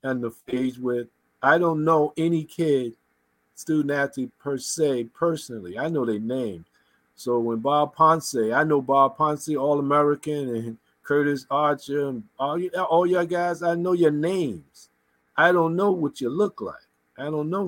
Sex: male